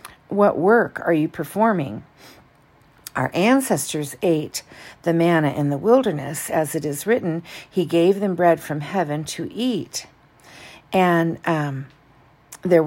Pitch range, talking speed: 145-180 Hz, 130 wpm